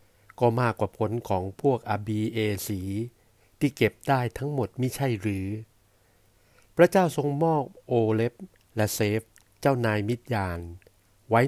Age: 60-79